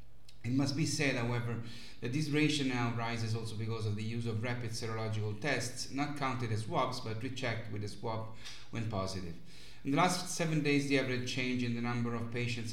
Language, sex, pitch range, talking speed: English, male, 110-130 Hz, 205 wpm